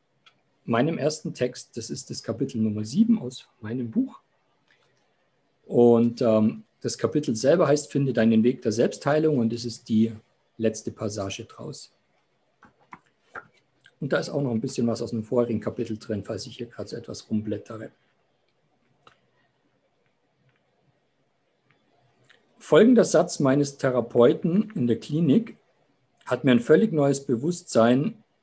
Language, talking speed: German, 135 wpm